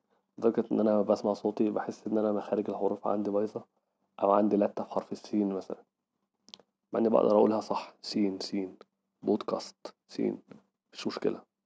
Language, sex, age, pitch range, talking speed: Arabic, male, 20-39, 105-110 Hz, 145 wpm